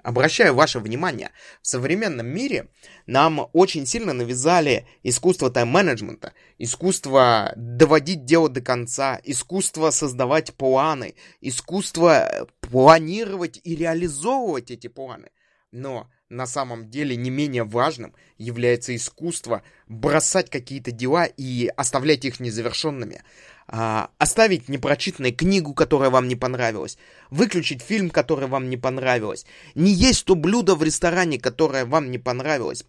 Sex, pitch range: male, 125-170 Hz